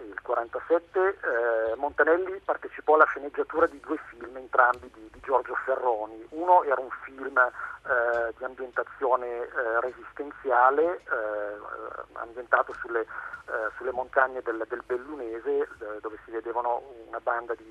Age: 40-59